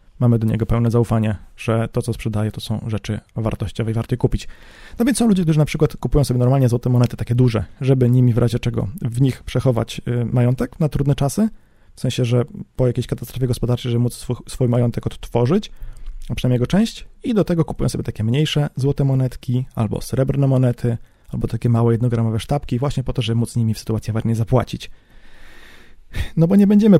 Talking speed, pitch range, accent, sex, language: 200 wpm, 115-140 Hz, native, male, Polish